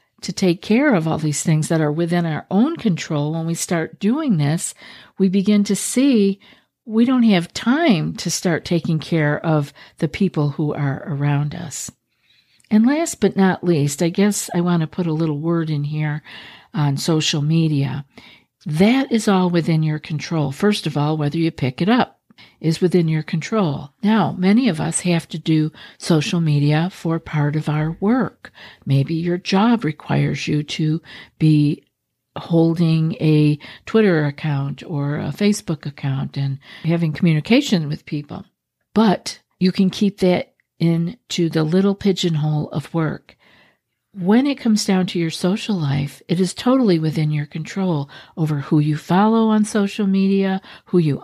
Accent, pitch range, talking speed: American, 155-200 Hz, 165 wpm